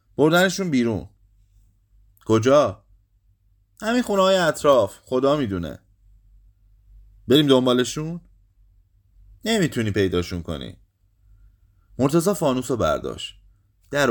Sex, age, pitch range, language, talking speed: male, 30-49, 95-130 Hz, Persian, 80 wpm